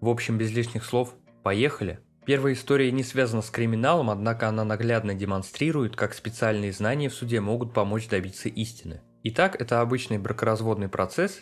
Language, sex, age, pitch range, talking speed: Russian, male, 20-39, 105-130 Hz, 160 wpm